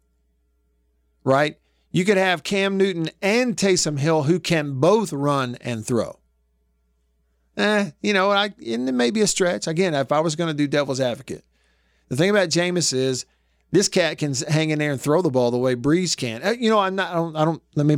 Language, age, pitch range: English, 50-69, 105-160 Hz